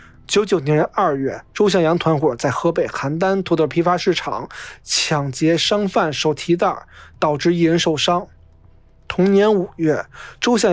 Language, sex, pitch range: Chinese, male, 150-190 Hz